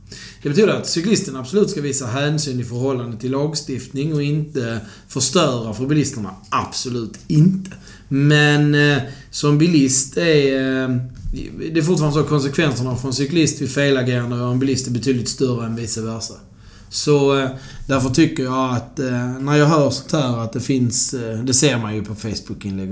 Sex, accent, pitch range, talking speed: male, native, 120-145 Hz, 175 wpm